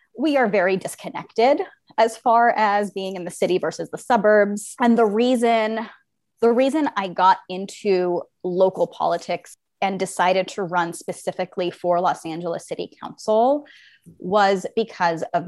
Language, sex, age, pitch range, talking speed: English, female, 20-39, 180-225 Hz, 145 wpm